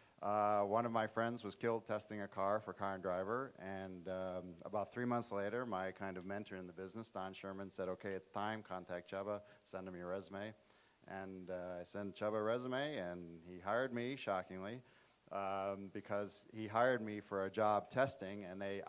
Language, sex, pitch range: English, male, 95-120 Hz